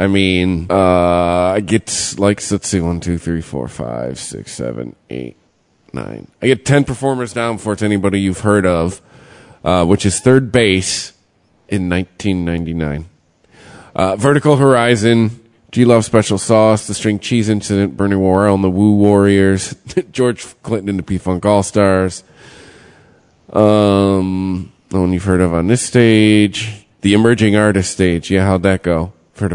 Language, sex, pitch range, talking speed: English, male, 95-115 Hz, 160 wpm